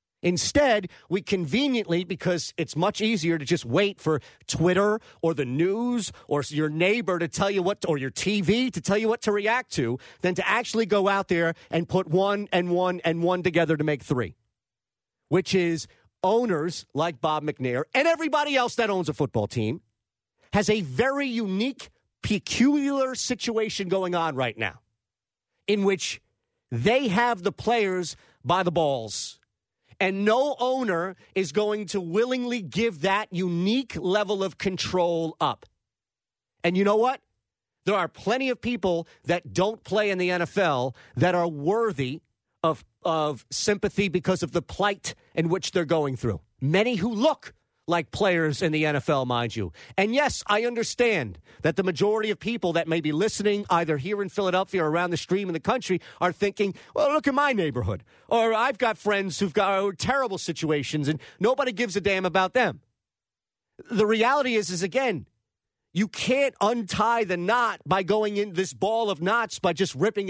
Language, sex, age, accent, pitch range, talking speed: English, male, 40-59, American, 160-215 Hz, 170 wpm